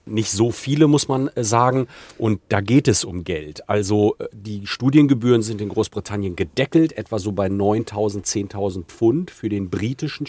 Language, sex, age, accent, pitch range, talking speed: German, male, 40-59, German, 95-115 Hz, 165 wpm